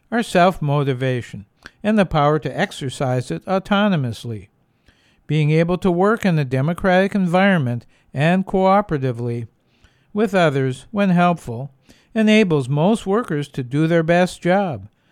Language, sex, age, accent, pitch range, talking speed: English, male, 60-79, American, 135-185 Hz, 120 wpm